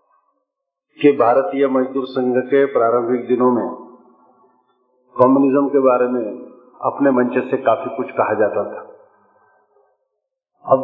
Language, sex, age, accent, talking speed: Hindi, male, 50-69, native, 115 wpm